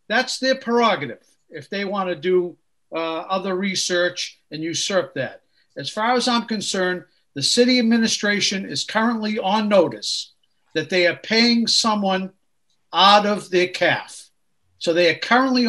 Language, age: English, 50-69